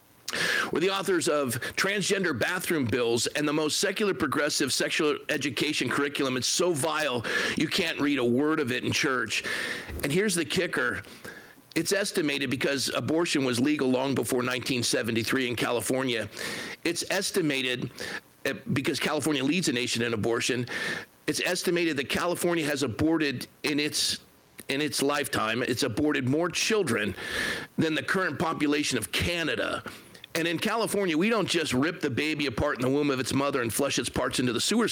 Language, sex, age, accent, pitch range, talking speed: English, male, 50-69, American, 135-195 Hz, 165 wpm